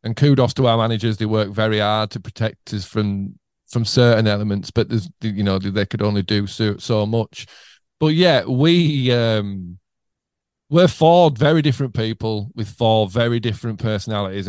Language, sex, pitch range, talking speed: English, male, 105-125 Hz, 170 wpm